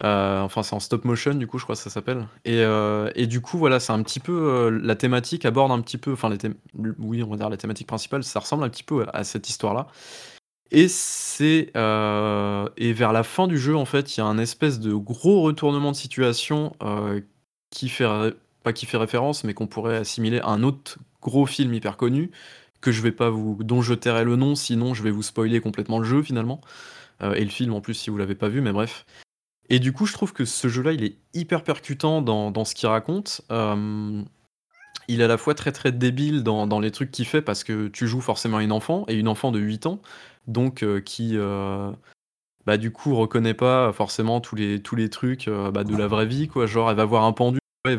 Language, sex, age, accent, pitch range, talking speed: French, male, 20-39, French, 110-140 Hz, 240 wpm